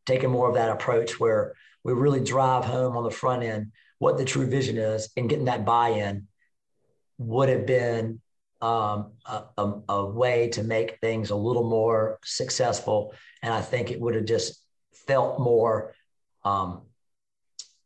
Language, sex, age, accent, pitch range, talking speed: English, male, 40-59, American, 110-130 Hz, 160 wpm